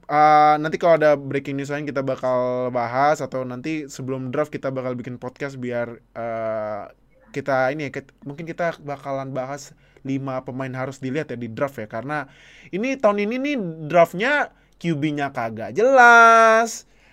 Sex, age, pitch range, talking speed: male, 20-39, 130-160 Hz, 160 wpm